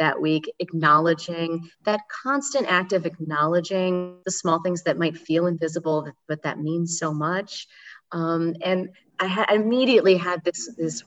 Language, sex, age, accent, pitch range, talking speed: English, female, 30-49, American, 160-195 Hz, 150 wpm